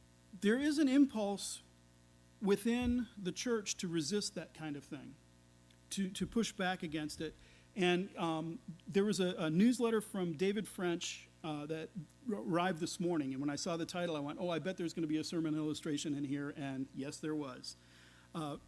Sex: male